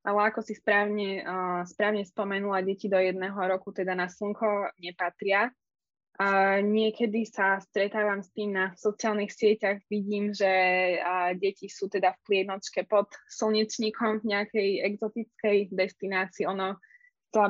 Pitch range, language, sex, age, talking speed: 190-210 Hz, Slovak, female, 10-29, 135 wpm